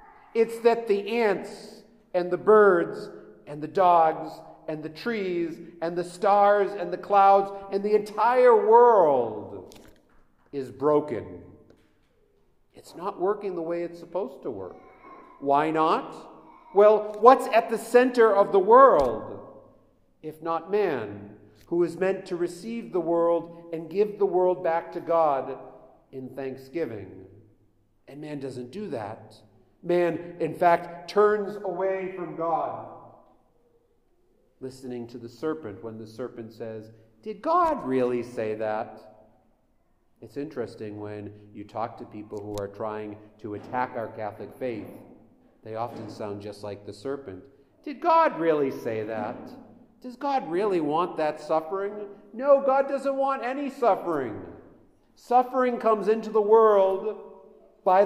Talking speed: 135 wpm